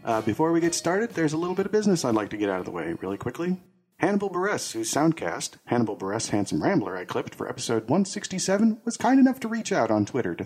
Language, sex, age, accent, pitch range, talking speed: English, male, 40-59, American, 110-185 Hz, 245 wpm